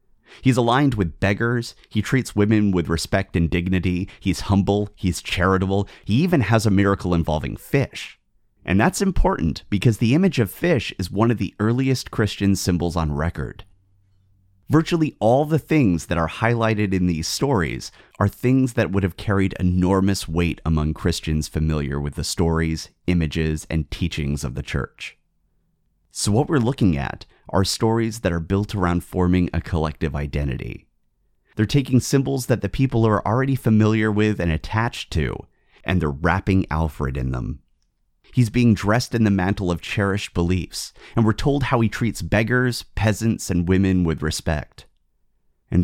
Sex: male